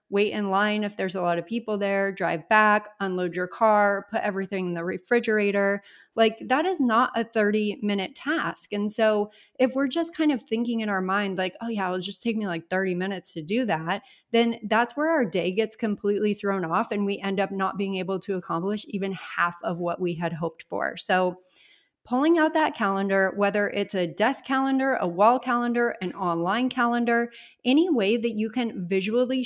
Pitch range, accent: 190-230 Hz, American